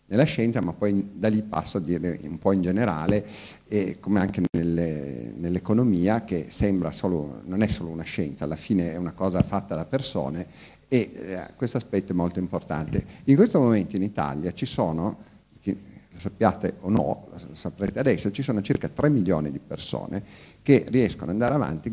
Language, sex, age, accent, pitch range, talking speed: Italian, male, 50-69, native, 85-105 Hz, 185 wpm